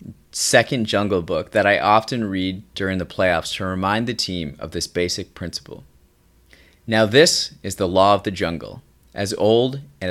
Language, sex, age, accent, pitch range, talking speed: English, male, 30-49, American, 85-115 Hz, 170 wpm